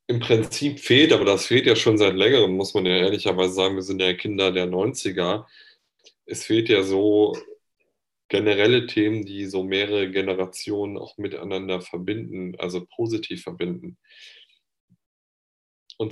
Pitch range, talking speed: 95-120 Hz, 140 wpm